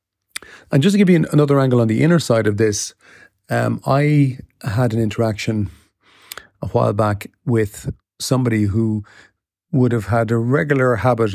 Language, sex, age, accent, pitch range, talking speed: English, male, 40-59, Irish, 105-130 Hz, 165 wpm